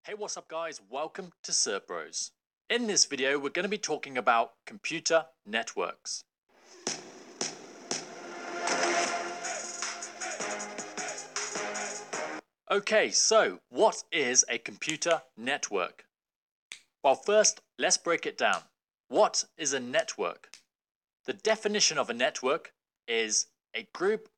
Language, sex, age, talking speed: English, male, 30-49, 110 wpm